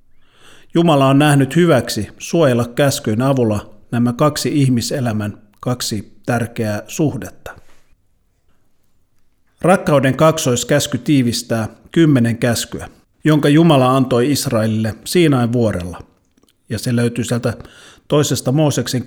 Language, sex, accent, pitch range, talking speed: Finnish, male, native, 110-145 Hz, 95 wpm